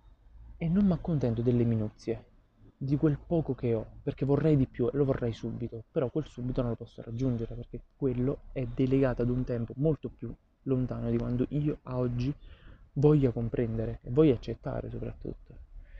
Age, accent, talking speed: 20-39, native, 175 wpm